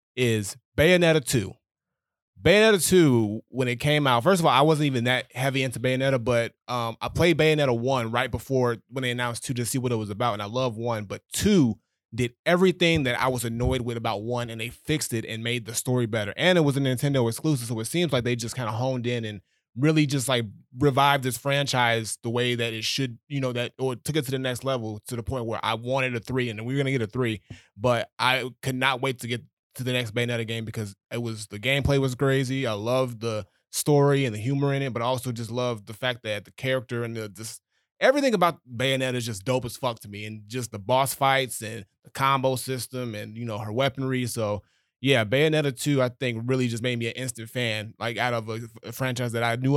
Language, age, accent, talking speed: English, 20-39, American, 245 wpm